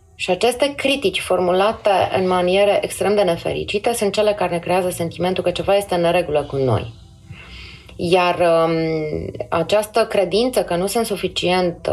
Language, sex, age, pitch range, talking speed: Romanian, female, 30-49, 160-215 Hz, 150 wpm